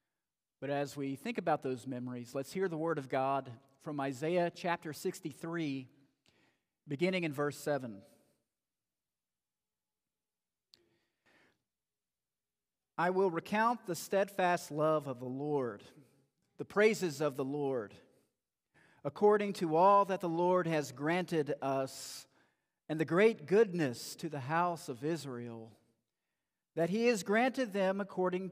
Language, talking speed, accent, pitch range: English, 125 wpm, American, 135-175 Hz